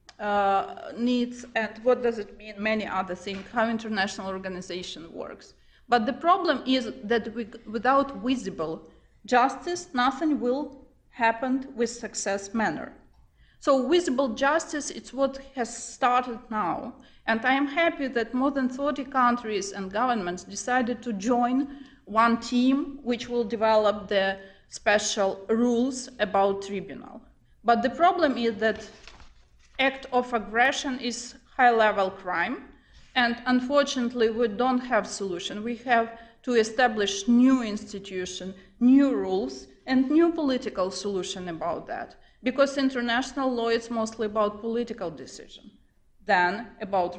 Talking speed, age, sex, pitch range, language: 130 wpm, 30-49, female, 210-265 Hz, English